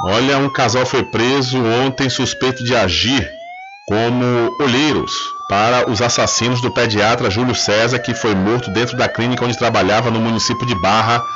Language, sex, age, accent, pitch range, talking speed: Portuguese, male, 40-59, Brazilian, 105-135 Hz, 160 wpm